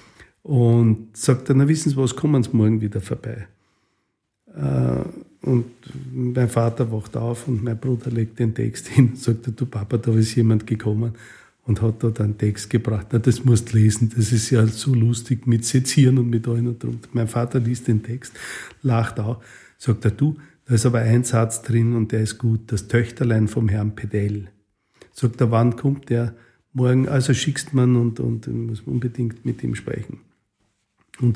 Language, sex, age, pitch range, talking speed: German, male, 50-69, 110-125 Hz, 190 wpm